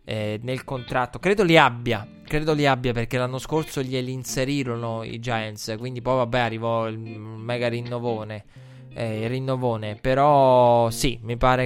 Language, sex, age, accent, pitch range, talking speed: Italian, male, 20-39, native, 115-130 Hz, 150 wpm